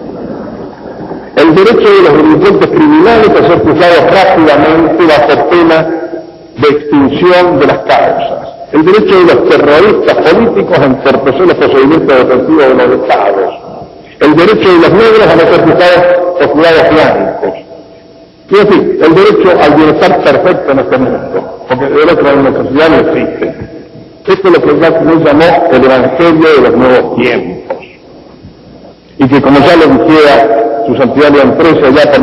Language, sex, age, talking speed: Spanish, male, 60-79, 155 wpm